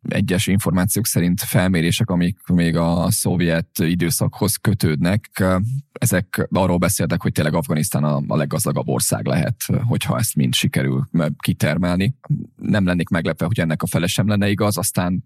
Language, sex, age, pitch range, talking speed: Hungarian, male, 20-39, 80-95 Hz, 140 wpm